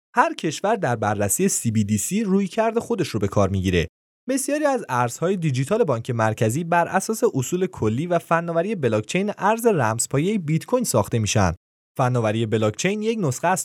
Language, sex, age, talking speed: Persian, male, 20-39, 165 wpm